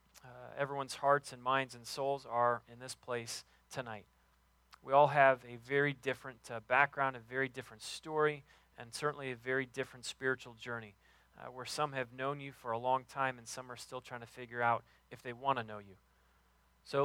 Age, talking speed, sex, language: 30-49, 195 wpm, male, English